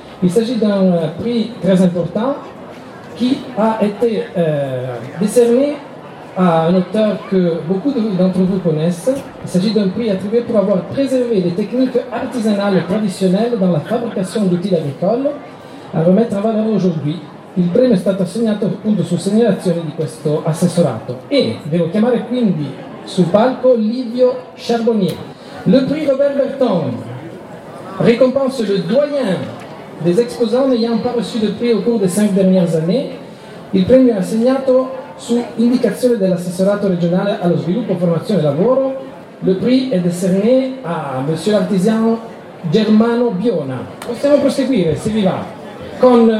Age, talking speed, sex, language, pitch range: 40-59, 145 wpm, male, Italian, 180-245 Hz